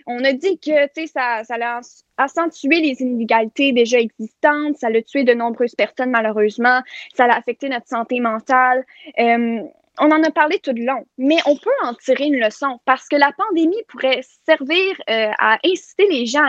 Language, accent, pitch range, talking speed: French, Canadian, 235-310 Hz, 185 wpm